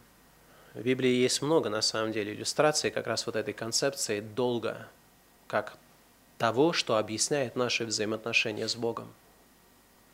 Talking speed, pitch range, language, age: 140 wpm, 120-175 Hz, Russian, 30-49